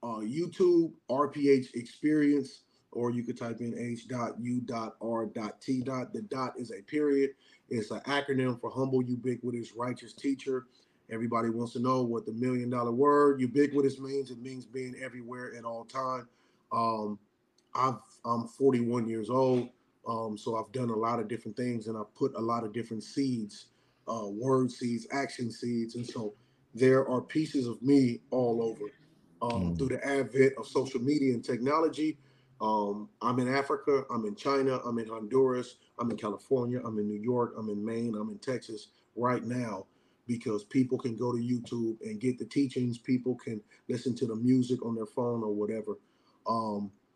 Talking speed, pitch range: 170 wpm, 115-135 Hz